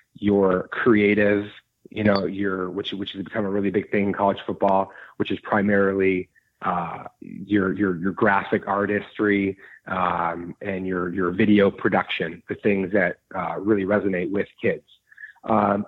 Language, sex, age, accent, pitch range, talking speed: English, male, 30-49, American, 95-110 Hz, 150 wpm